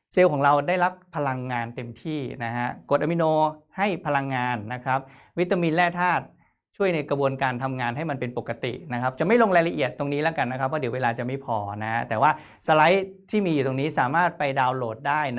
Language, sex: Thai, male